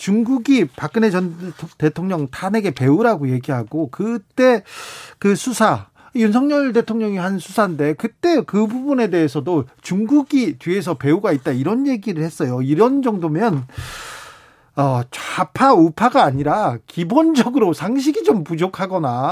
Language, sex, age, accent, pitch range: Korean, male, 40-59, native, 155-230 Hz